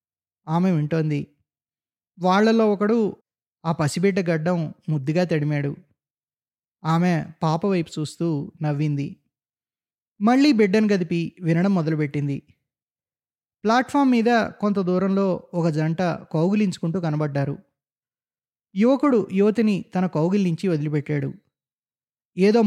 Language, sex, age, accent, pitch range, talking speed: Telugu, male, 20-39, native, 150-195 Hz, 85 wpm